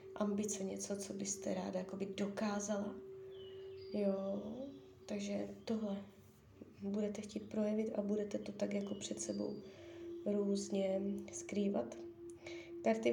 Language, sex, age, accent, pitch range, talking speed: Czech, female, 20-39, native, 195-240 Hz, 100 wpm